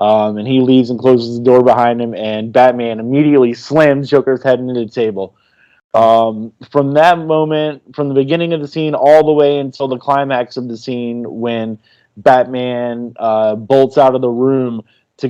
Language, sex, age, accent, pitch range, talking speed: English, male, 20-39, American, 120-145 Hz, 185 wpm